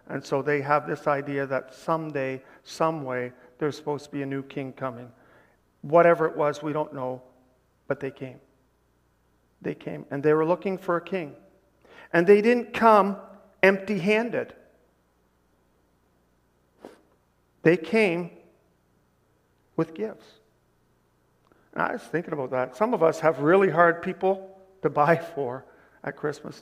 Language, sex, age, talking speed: English, male, 50-69, 140 wpm